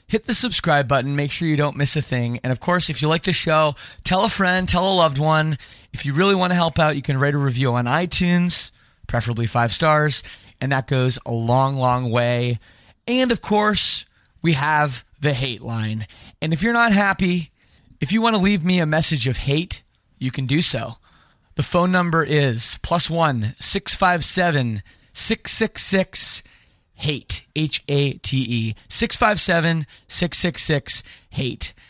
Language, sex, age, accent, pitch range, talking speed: English, male, 20-39, American, 120-170 Hz, 175 wpm